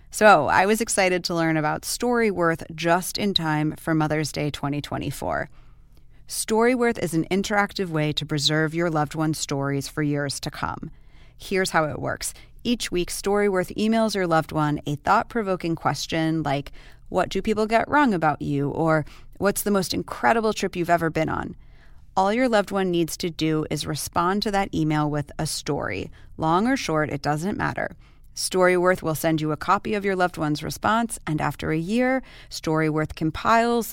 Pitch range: 155-195 Hz